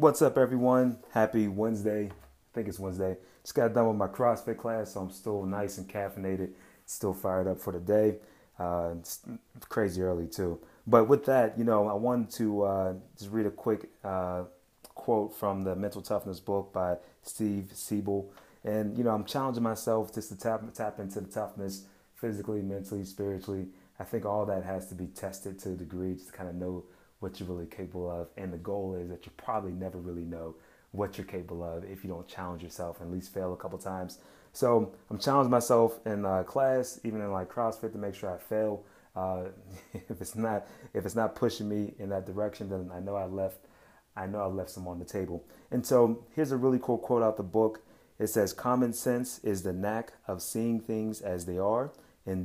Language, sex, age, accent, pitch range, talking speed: English, male, 30-49, American, 95-110 Hz, 210 wpm